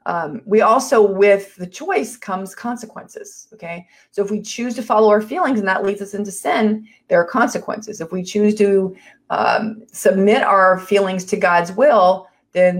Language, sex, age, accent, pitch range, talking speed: English, female, 30-49, American, 175-215 Hz, 175 wpm